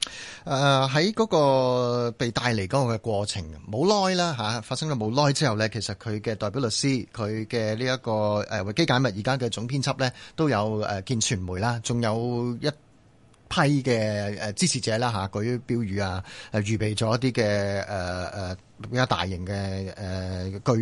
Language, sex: Chinese, male